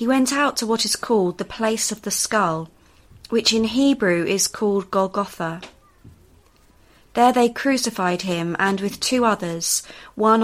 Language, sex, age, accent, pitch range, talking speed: English, female, 30-49, British, 170-230 Hz, 155 wpm